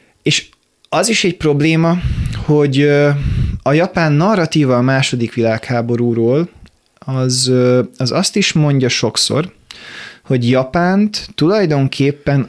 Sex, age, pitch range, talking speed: male, 20-39, 120-150 Hz, 100 wpm